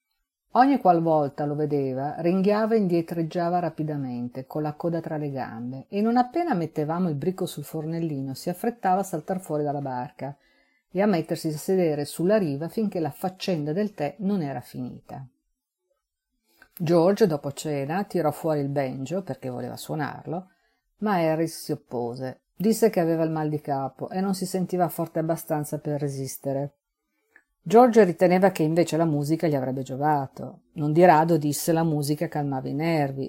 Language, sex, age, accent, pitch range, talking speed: Italian, female, 50-69, native, 145-195 Hz, 165 wpm